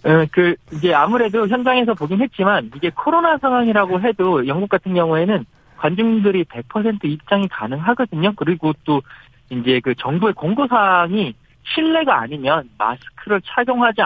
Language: Korean